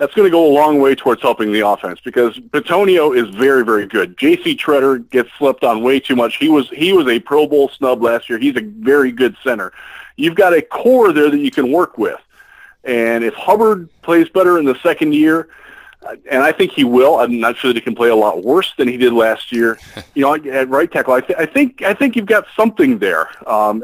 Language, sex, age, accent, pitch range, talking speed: English, male, 40-59, American, 130-210 Hz, 240 wpm